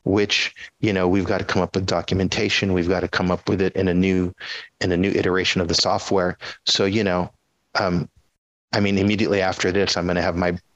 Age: 30-49